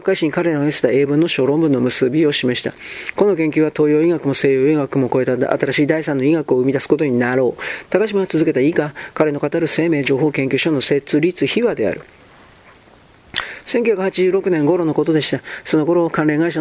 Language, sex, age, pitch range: Japanese, male, 40-59, 140-160 Hz